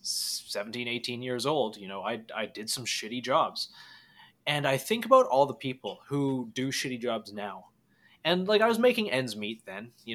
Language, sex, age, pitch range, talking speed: English, male, 20-39, 115-150 Hz, 195 wpm